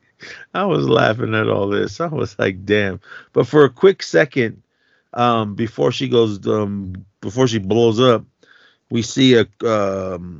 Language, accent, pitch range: English, American, 95-115 Hz